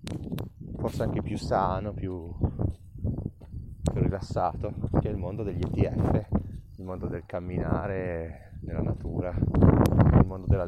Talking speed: 125 wpm